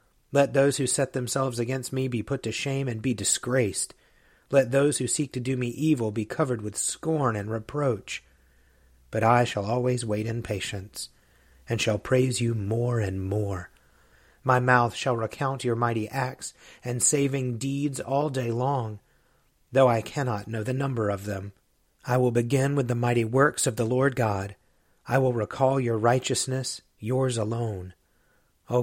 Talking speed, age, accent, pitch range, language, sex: 170 wpm, 40-59, American, 110-130 Hz, English, male